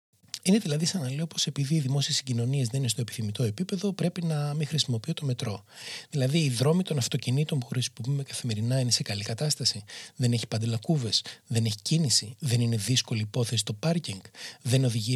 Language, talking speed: Greek, 190 wpm